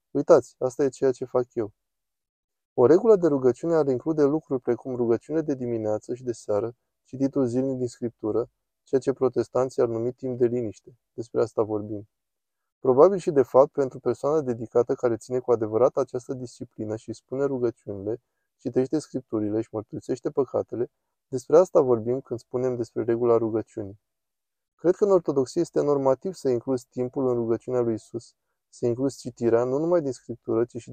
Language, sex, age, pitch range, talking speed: Romanian, male, 20-39, 115-135 Hz, 170 wpm